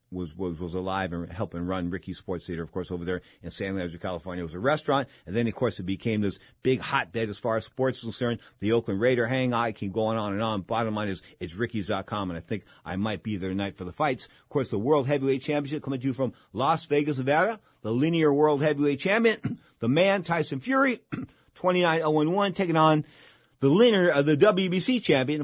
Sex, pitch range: male, 100-145 Hz